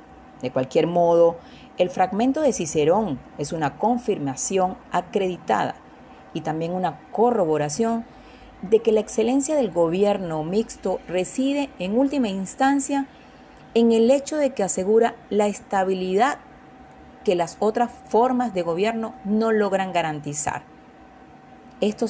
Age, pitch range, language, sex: 40-59, 175-245 Hz, Spanish, female